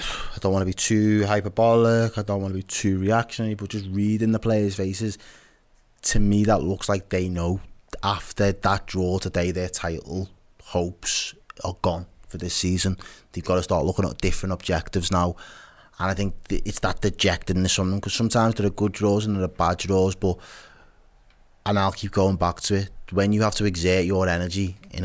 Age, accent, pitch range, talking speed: 20-39, British, 90-105 Hz, 195 wpm